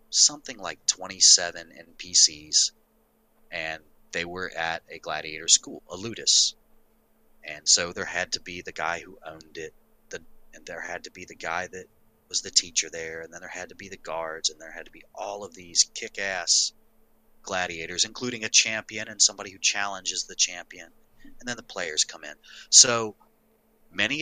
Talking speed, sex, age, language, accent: 180 wpm, male, 30-49, English, American